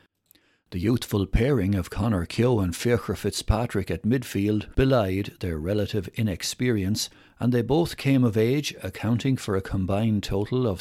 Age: 60-79